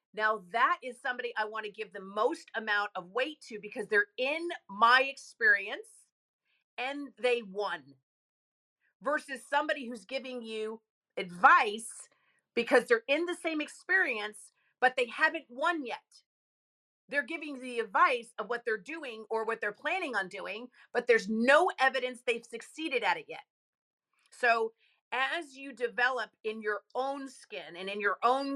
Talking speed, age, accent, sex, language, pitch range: 155 wpm, 40-59, American, female, English, 215-275 Hz